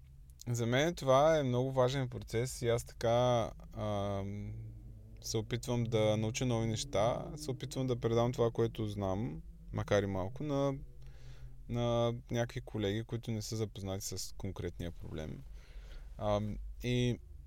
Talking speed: 135 wpm